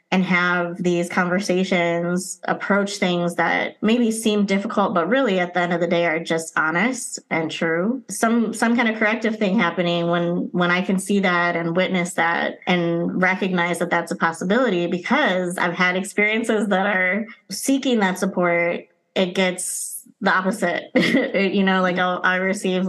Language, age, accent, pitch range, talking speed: English, 20-39, American, 175-205 Hz, 170 wpm